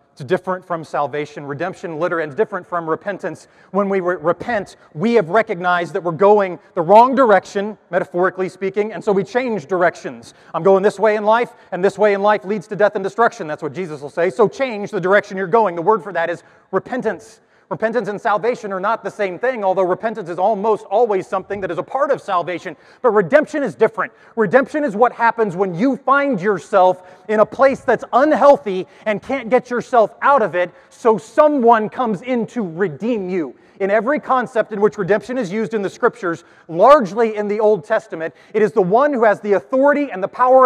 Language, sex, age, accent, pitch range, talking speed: English, male, 30-49, American, 185-230 Hz, 205 wpm